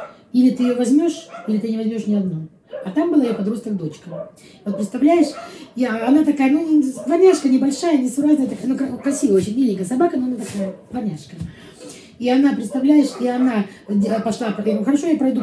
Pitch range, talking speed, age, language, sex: 195-250 Hz, 170 wpm, 20-39, Russian, female